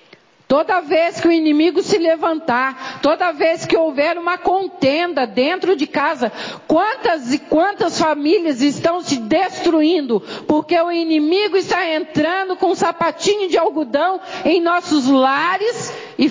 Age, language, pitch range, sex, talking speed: 50-69, Portuguese, 265-355 Hz, female, 135 wpm